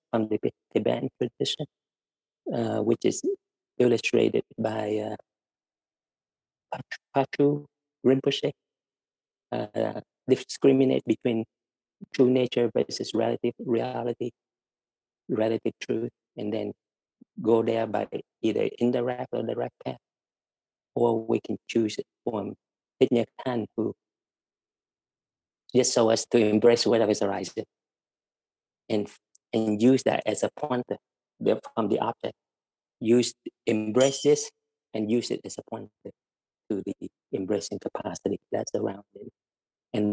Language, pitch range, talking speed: English, 105-130 Hz, 110 wpm